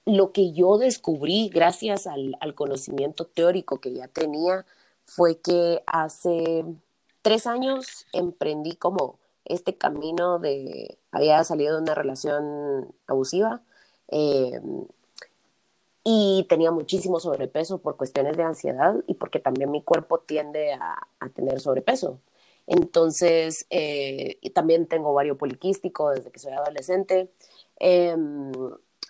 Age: 30-49